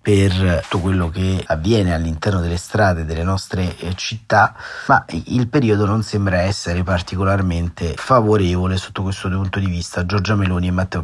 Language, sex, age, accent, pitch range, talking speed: Italian, male, 30-49, native, 90-105 Hz, 150 wpm